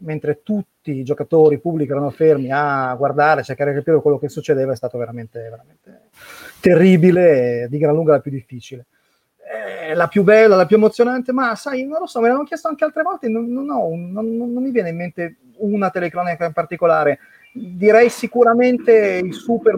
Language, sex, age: Italian, male, 30-49